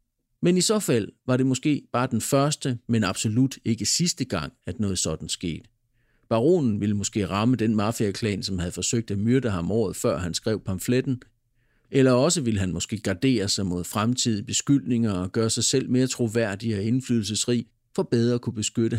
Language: Danish